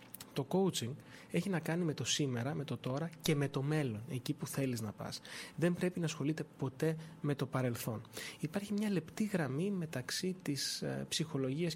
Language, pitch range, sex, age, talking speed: Greek, 130-165 Hz, male, 20-39, 180 wpm